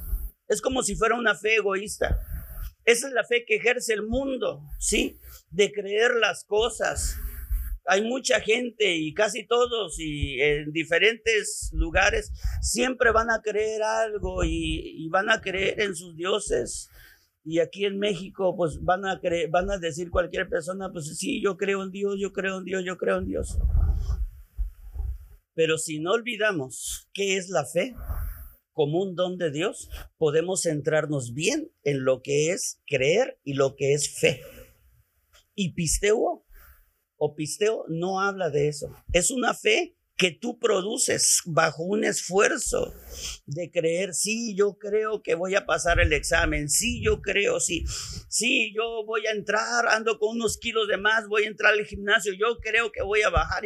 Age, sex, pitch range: 50-69, male, 155-220 Hz